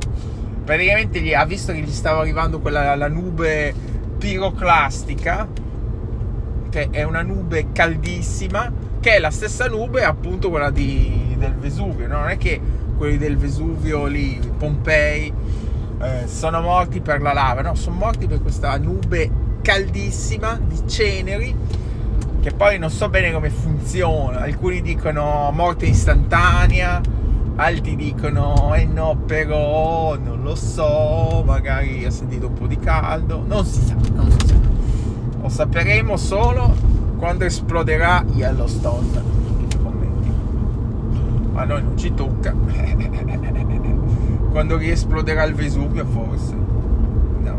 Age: 20-39